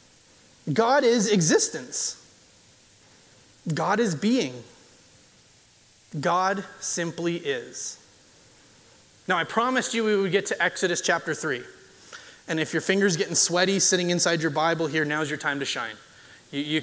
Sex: male